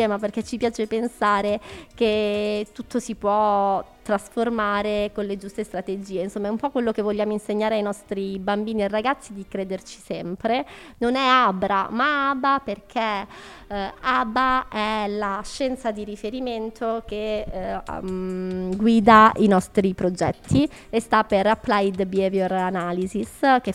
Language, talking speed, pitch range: Italian, 145 wpm, 195-230 Hz